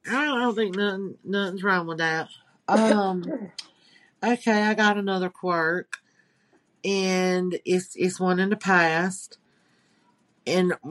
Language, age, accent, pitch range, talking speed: English, 40-59, American, 160-190 Hz, 130 wpm